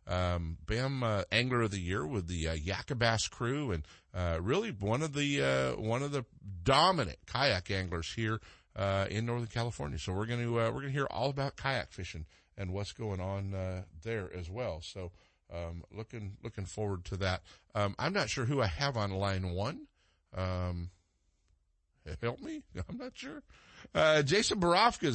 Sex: male